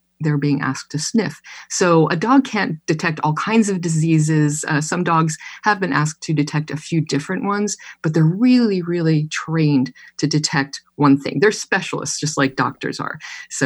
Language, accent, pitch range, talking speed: English, American, 145-175 Hz, 185 wpm